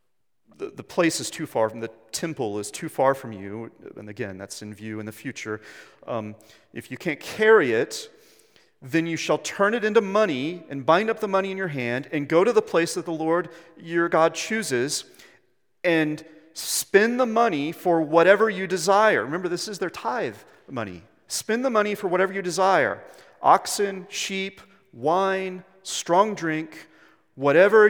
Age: 40-59